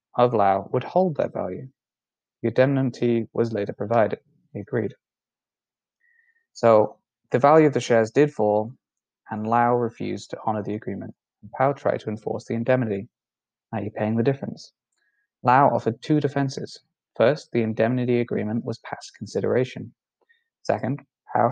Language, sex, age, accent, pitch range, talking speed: English, male, 20-39, British, 110-135 Hz, 140 wpm